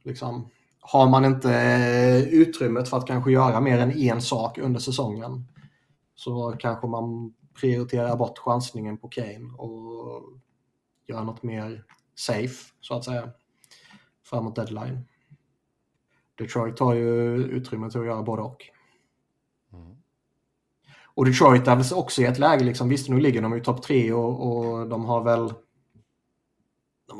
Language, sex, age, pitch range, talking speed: Swedish, male, 20-39, 115-130 Hz, 140 wpm